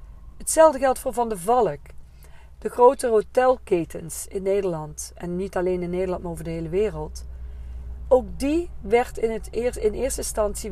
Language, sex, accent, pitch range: Dutch, female, Dutch, 165-235 Hz